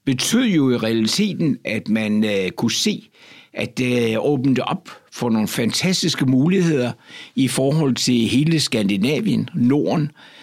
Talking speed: 130 wpm